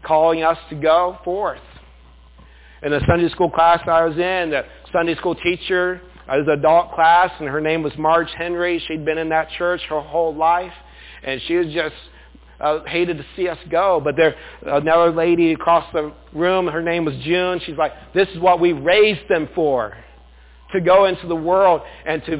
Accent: American